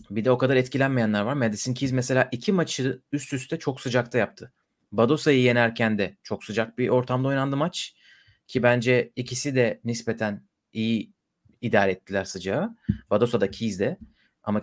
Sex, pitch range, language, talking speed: male, 110-135 Hz, Turkish, 160 wpm